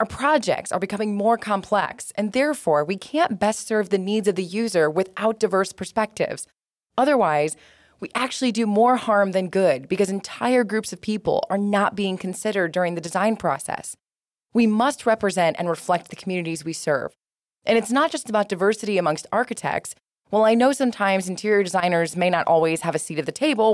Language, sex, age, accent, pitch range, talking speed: English, female, 20-39, American, 175-220 Hz, 185 wpm